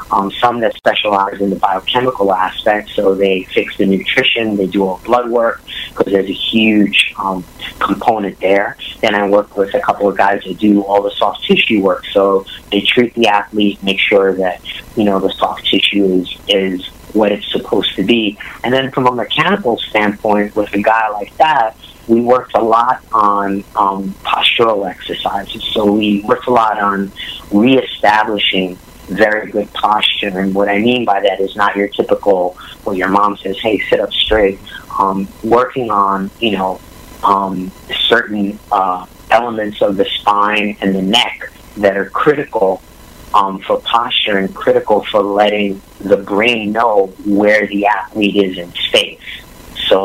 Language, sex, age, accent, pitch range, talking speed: English, male, 30-49, American, 95-110 Hz, 170 wpm